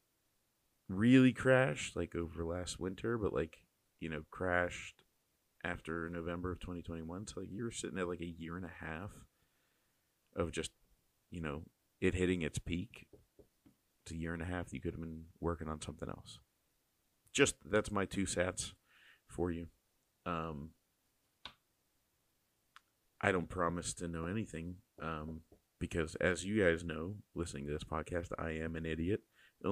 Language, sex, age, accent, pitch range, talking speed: English, male, 40-59, American, 80-95 Hz, 160 wpm